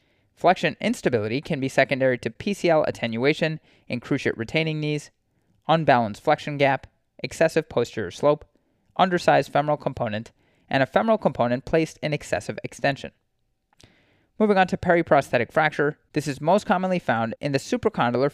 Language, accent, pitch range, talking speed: English, American, 125-160 Hz, 135 wpm